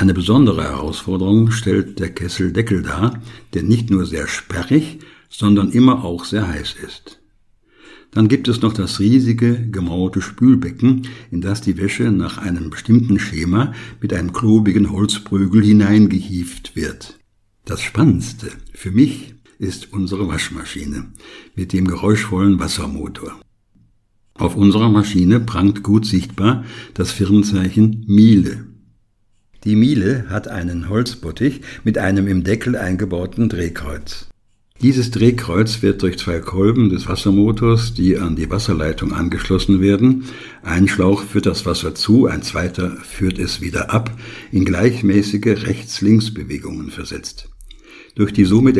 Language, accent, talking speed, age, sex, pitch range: German, German, 130 wpm, 60-79, male, 95-115 Hz